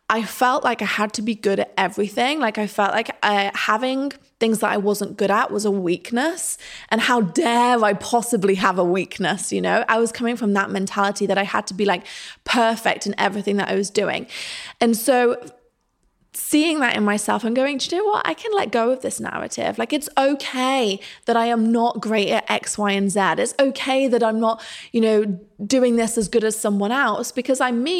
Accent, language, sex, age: British, English, female, 20-39